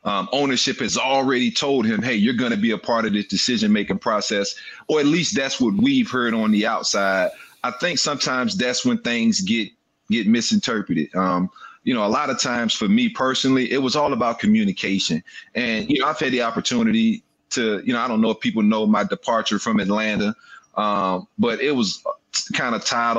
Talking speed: 200 wpm